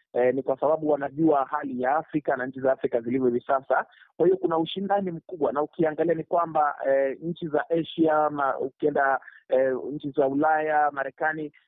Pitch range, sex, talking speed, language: 130-155 Hz, male, 175 wpm, Swahili